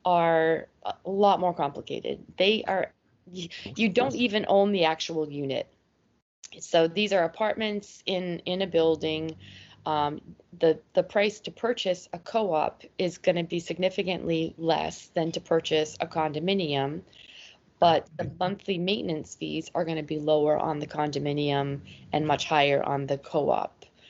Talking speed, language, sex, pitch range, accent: 155 wpm, English, female, 155-180 Hz, American